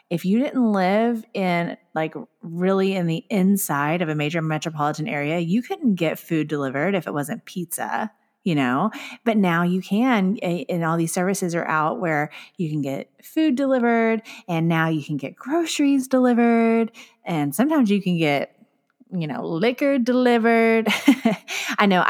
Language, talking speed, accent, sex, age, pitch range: English, 165 wpm, American, female, 30-49, 160-235 Hz